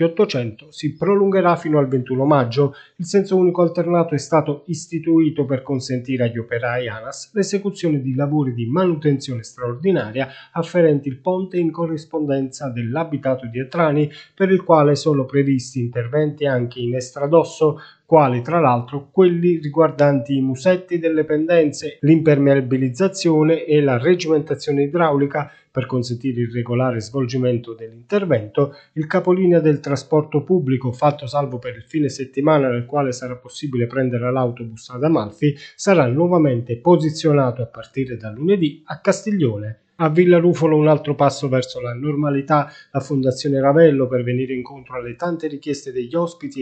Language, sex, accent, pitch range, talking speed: Italian, male, native, 130-165 Hz, 140 wpm